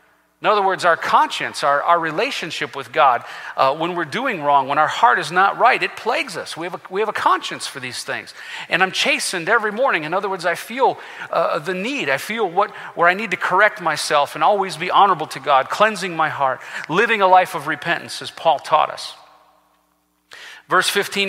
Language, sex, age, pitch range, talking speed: English, male, 40-59, 170-220 Hz, 215 wpm